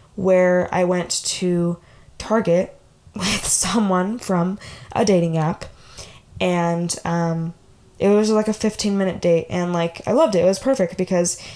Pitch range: 180-225 Hz